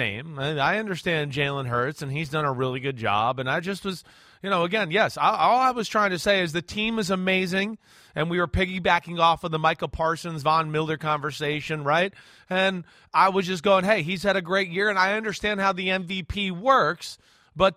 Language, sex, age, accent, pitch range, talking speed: English, male, 30-49, American, 155-205 Hz, 205 wpm